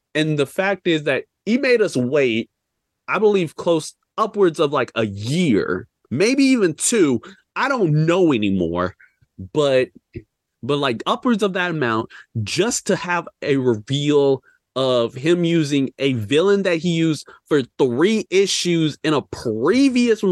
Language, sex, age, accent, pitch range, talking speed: English, male, 30-49, American, 120-170 Hz, 150 wpm